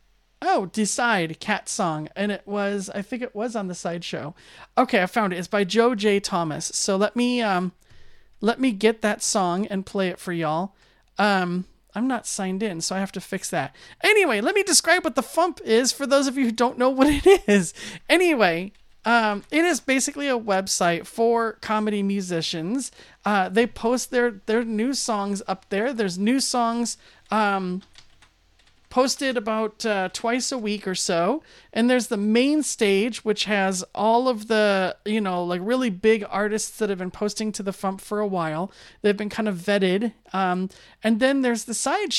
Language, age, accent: English, 30-49, American